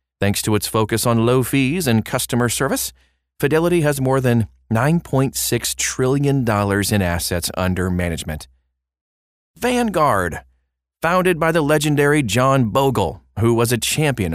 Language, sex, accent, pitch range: English, male, American, 90-130 Hz